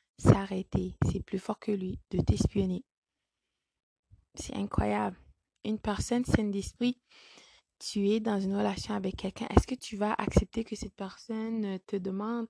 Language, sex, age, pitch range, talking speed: French, female, 20-39, 190-225 Hz, 150 wpm